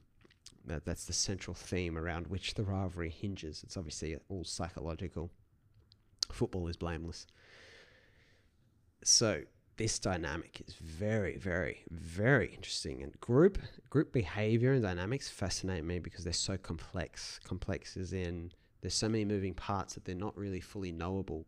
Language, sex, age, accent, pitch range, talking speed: English, male, 20-39, Australian, 90-110 Hz, 140 wpm